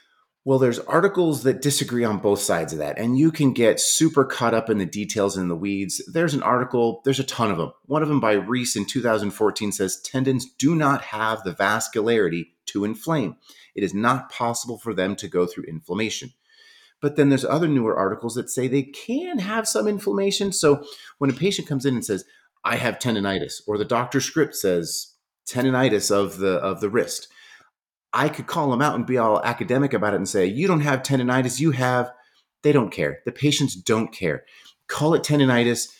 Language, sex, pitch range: English, male, 105-145 Hz